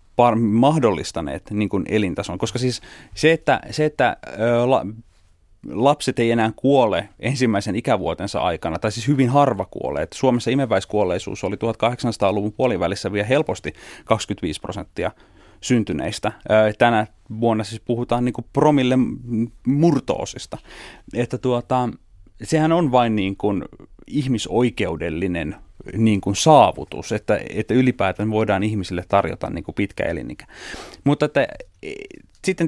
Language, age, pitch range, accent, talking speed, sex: Finnish, 30-49, 105-130 Hz, native, 115 wpm, male